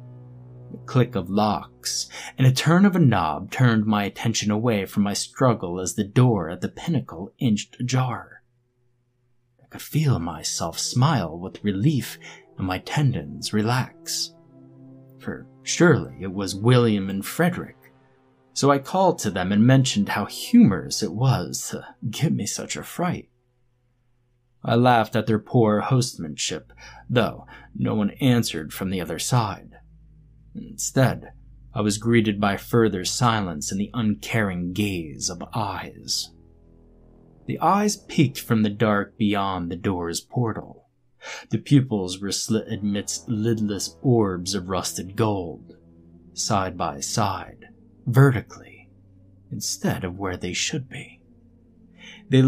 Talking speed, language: 135 wpm, English